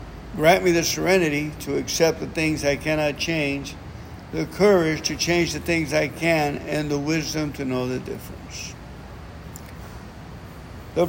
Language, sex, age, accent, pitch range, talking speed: English, male, 60-79, American, 130-170 Hz, 145 wpm